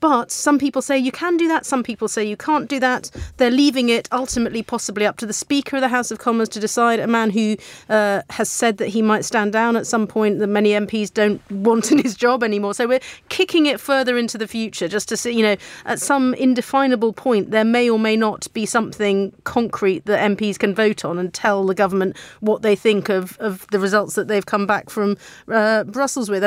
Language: English